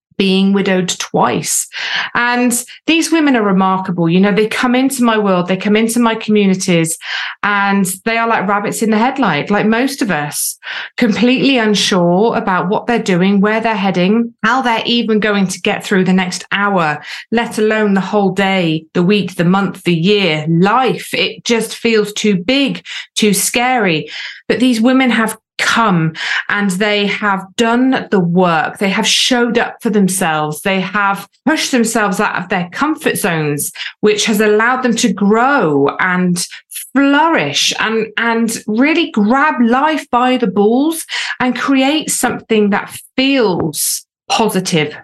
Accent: British